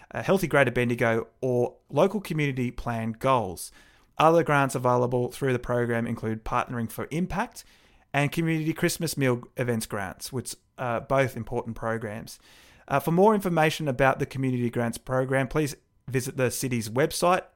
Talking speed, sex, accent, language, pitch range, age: 145 wpm, male, Australian, English, 115-140 Hz, 30-49